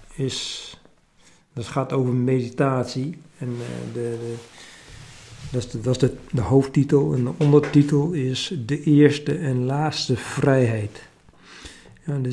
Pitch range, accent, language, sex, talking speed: 125-140 Hz, Dutch, Dutch, male, 135 wpm